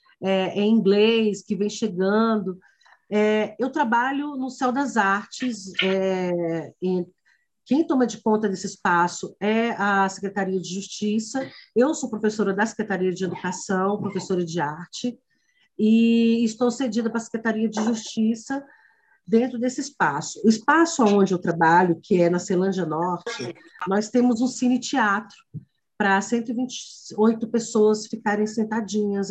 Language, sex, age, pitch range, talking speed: Portuguese, female, 40-59, 185-225 Hz, 125 wpm